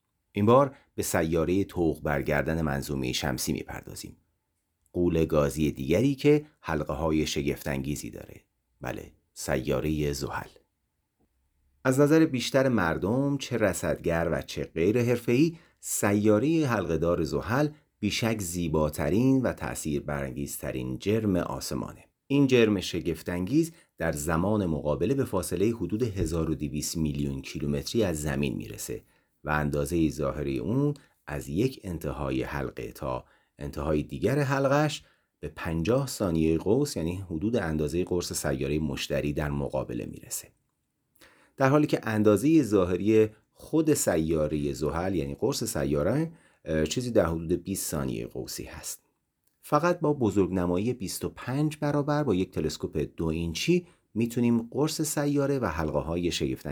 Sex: male